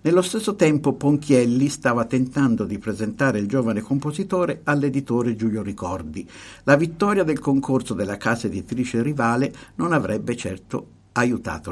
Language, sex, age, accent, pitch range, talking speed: Italian, male, 50-69, native, 100-145 Hz, 135 wpm